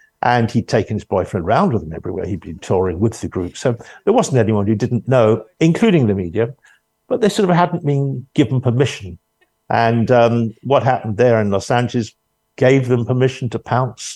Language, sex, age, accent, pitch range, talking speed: English, male, 50-69, British, 115-145 Hz, 195 wpm